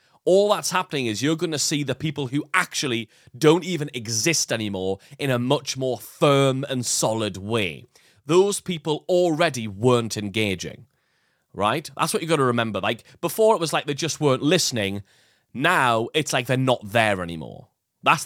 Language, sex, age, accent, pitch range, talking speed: English, male, 30-49, British, 115-160 Hz, 170 wpm